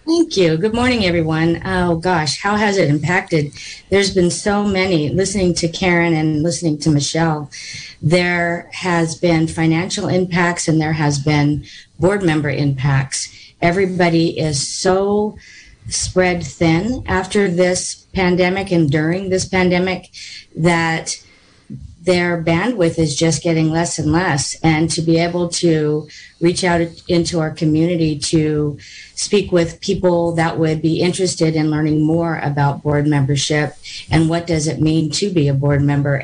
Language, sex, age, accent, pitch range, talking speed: English, female, 40-59, American, 150-175 Hz, 145 wpm